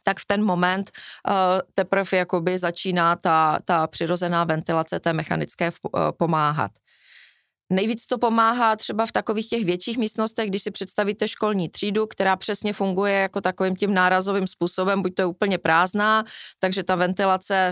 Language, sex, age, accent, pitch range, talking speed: English, female, 20-39, Czech, 175-210 Hz, 150 wpm